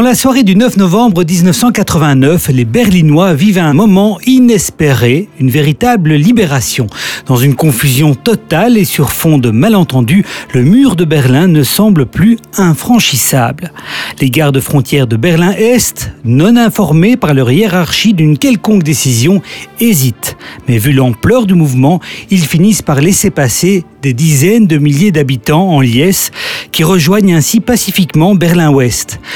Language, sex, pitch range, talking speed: French, male, 145-205 Hz, 140 wpm